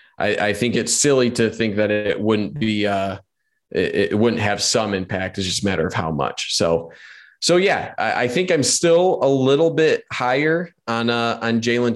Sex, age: male, 20-39